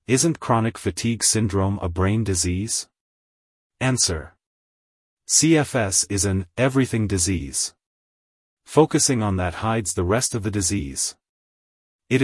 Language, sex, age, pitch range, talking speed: English, male, 30-49, 90-120 Hz, 115 wpm